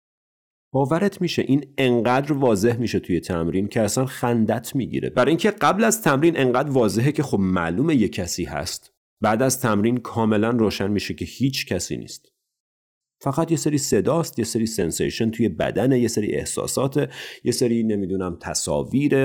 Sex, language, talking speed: male, Persian, 160 wpm